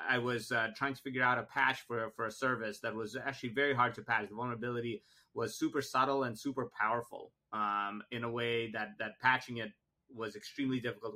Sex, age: male, 30-49